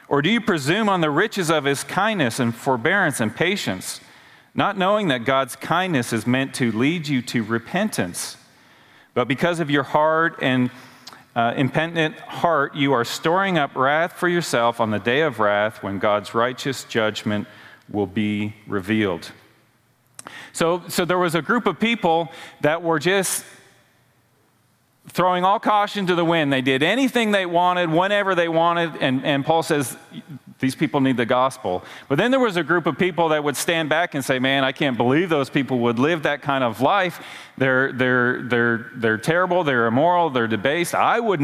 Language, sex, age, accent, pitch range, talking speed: English, male, 40-59, American, 125-170 Hz, 180 wpm